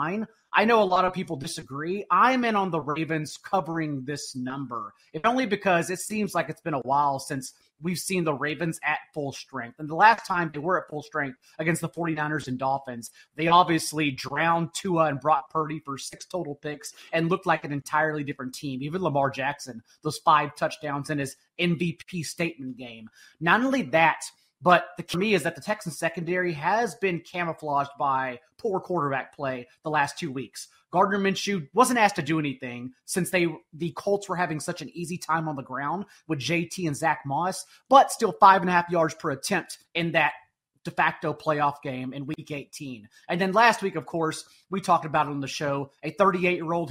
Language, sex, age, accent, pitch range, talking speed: English, male, 30-49, American, 145-180 Hz, 200 wpm